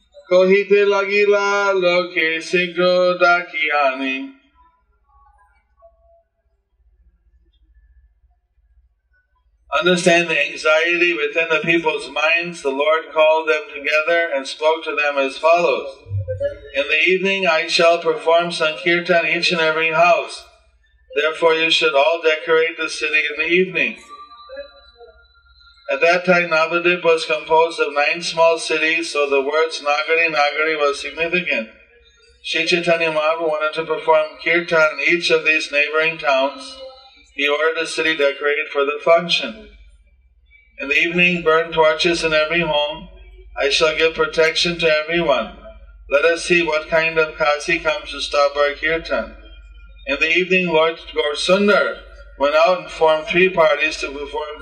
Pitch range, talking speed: 150-180 Hz, 130 wpm